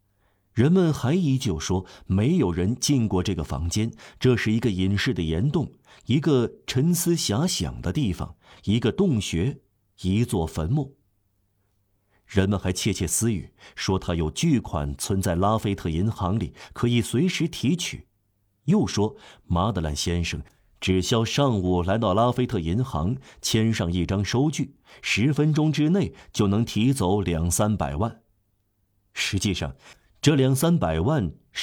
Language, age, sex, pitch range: Chinese, 50-69, male, 95-120 Hz